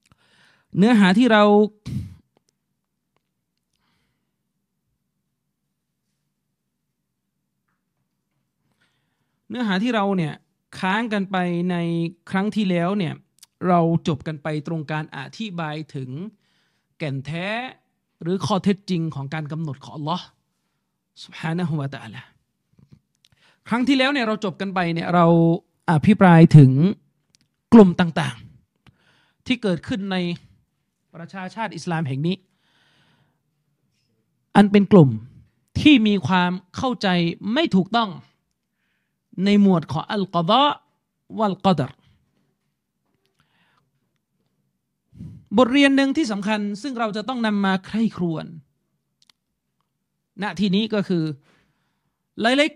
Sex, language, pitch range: male, Thai, 160-215 Hz